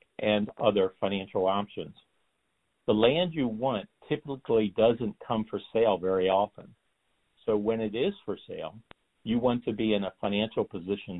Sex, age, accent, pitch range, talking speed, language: male, 50-69, American, 100-120 Hz, 155 wpm, English